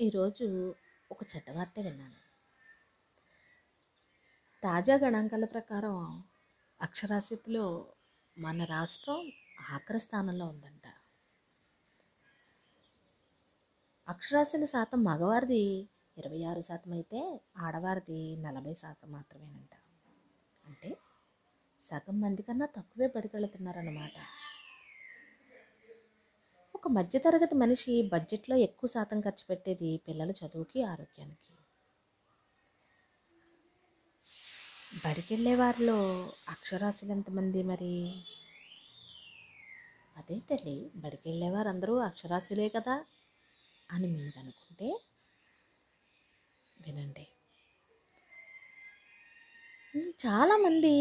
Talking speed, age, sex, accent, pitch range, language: 65 wpm, 20-39, female, native, 170-250 Hz, Telugu